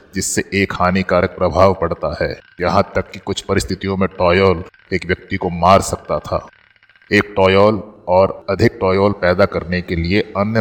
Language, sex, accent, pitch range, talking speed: Hindi, male, native, 95-100 Hz, 165 wpm